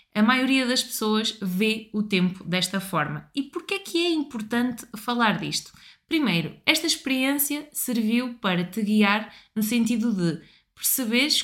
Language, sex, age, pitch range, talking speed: Portuguese, female, 20-39, 195-265 Hz, 145 wpm